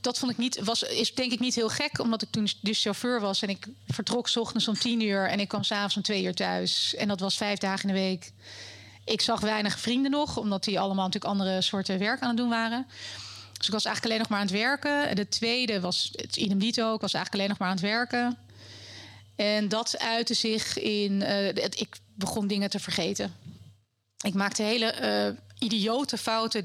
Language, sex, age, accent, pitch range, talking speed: Dutch, female, 30-49, Dutch, 155-225 Hz, 210 wpm